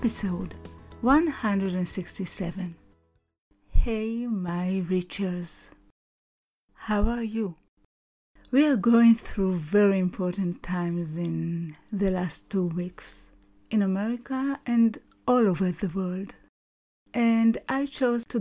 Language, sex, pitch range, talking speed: English, female, 180-230 Hz, 100 wpm